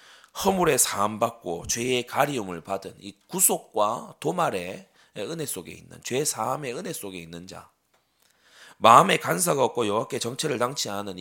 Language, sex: Korean, male